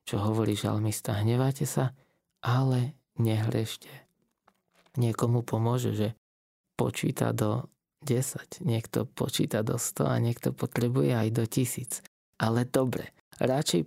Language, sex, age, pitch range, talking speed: Slovak, male, 20-39, 115-155 Hz, 115 wpm